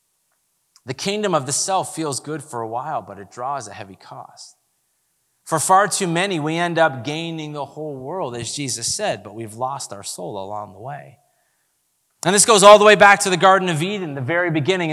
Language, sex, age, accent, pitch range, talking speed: English, male, 30-49, American, 135-195 Hz, 215 wpm